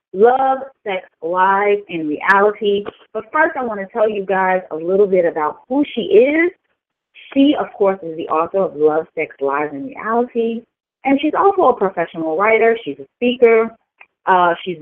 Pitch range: 165-255 Hz